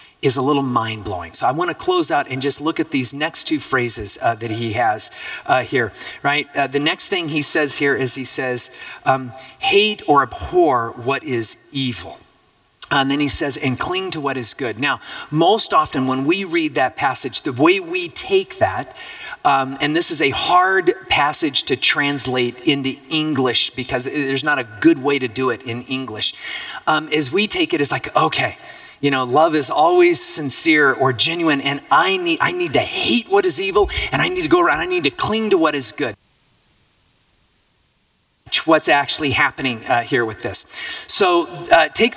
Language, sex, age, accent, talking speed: English, male, 30-49, American, 195 wpm